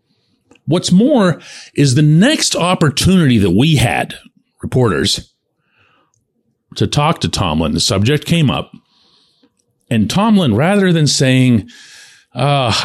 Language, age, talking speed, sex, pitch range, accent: English, 40-59, 110 wpm, male, 95-155 Hz, American